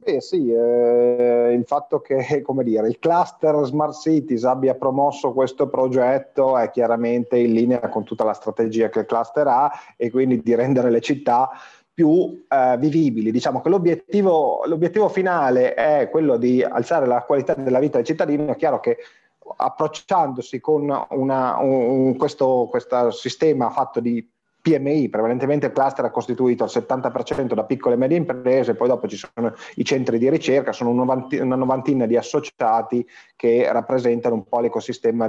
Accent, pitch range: native, 120-150 Hz